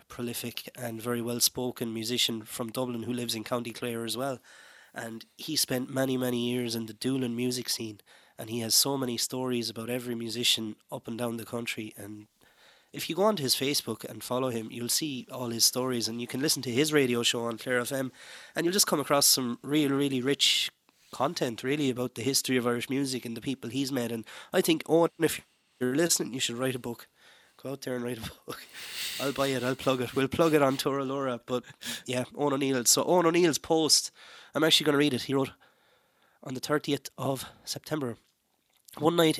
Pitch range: 120-135 Hz